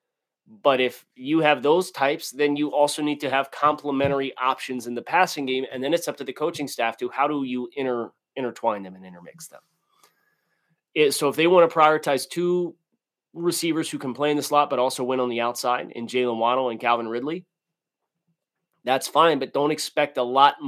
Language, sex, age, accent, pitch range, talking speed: English, male, 30-49, American, 120-165 Hz, 205 wpm